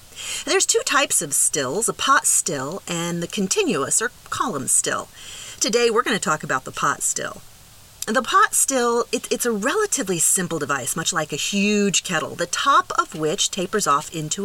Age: 40-59